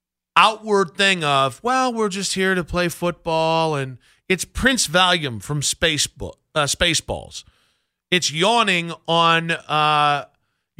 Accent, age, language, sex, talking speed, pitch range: American, 40-59, English, male, 120 wpm, 150-200 Hz